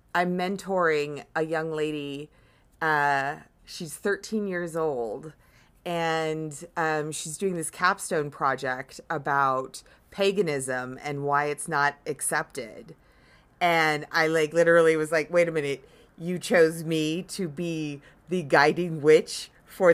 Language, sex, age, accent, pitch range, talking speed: English, female, 30-49, American, 155-200 Hz, 125 wpm